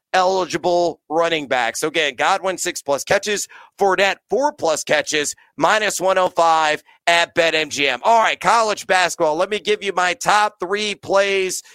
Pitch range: 175-225 Hz